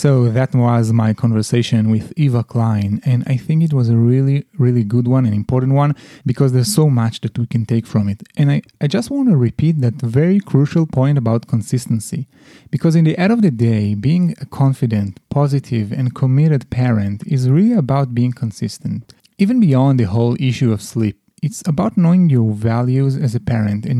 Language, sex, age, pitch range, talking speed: English, male, 30-49, 115-145 Hz, 200 wpm